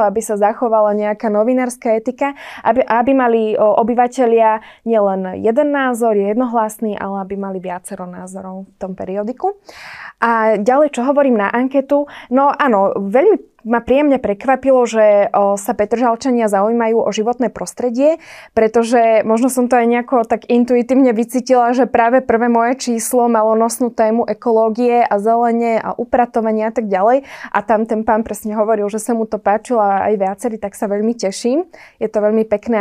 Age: 20-39